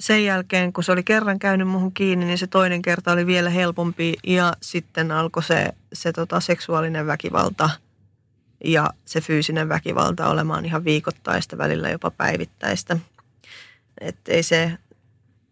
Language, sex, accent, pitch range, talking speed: Finnish, female, native, 125-175 Hz, 145 wpm